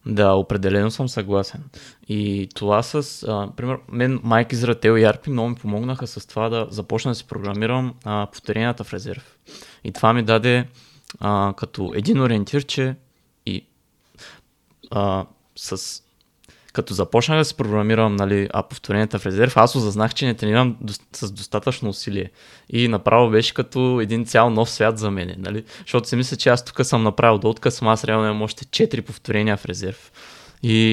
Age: 20-39